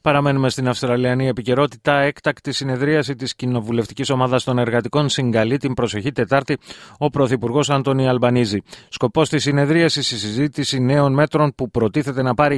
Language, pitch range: Greek, 120-145 Hz